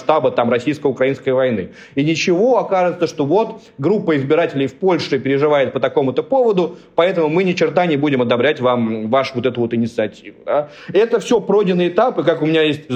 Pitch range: 140-180 Hz